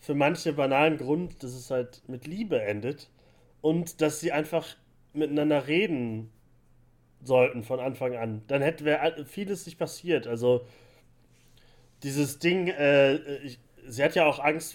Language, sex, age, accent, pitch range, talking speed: German, male, 30-49, German, 120-155 Hz, 140 wpm